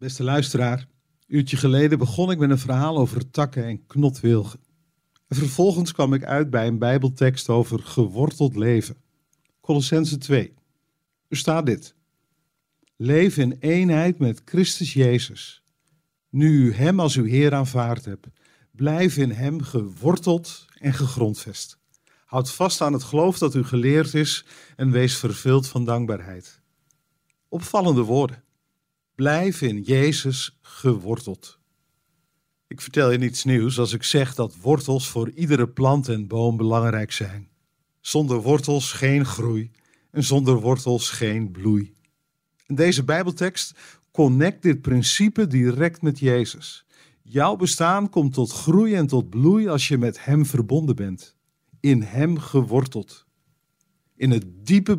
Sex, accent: male, Dutch